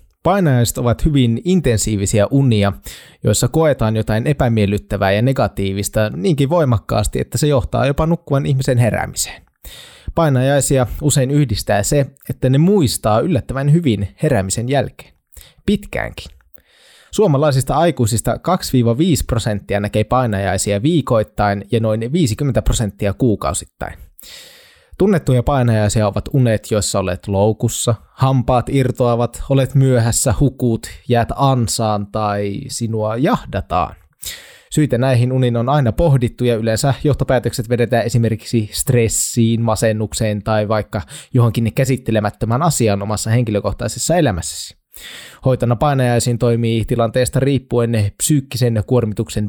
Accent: native